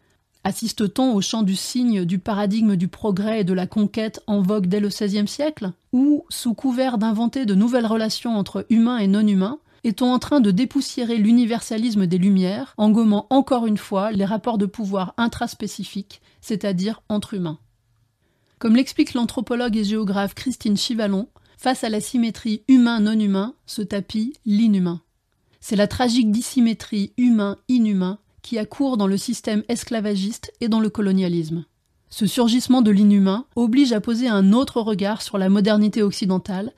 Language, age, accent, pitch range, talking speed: French, 30-49, French, 195-235 Hz, 155 wpm